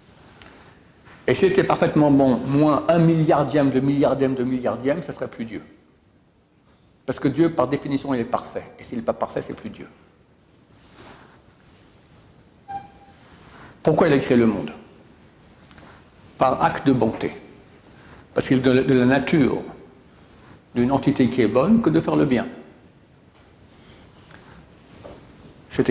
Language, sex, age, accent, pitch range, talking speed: French, male, 60-79, French, 125-160 Hz, 140 wpm